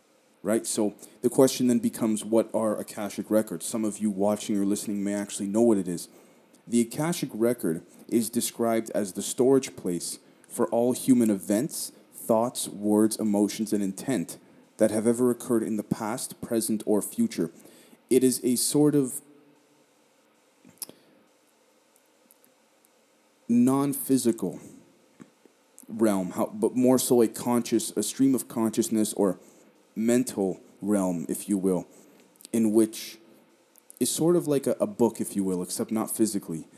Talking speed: 145 wpm